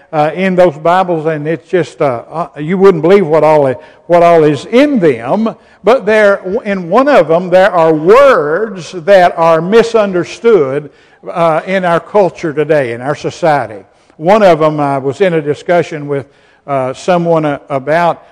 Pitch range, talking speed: 155-200 Hz, 175 wpm